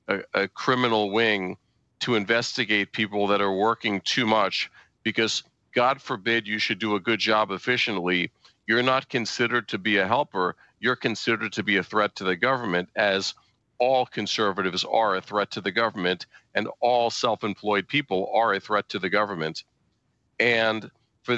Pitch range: 105-125 Hz